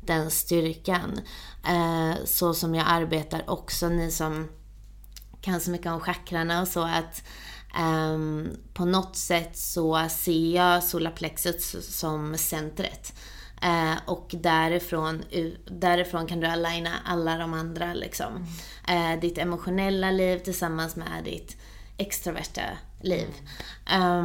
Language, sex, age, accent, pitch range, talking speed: Swedish, female, 20-39, native, 160-180 Hz, 105 wpm